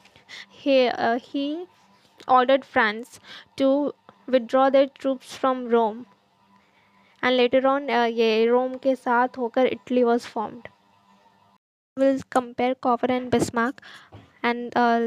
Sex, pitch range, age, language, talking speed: female, 235-260 Hz, 20-39, English, 115 wpm